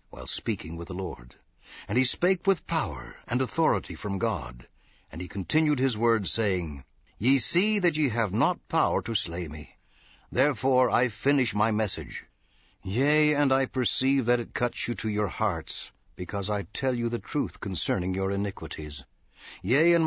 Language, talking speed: English, 170 wpm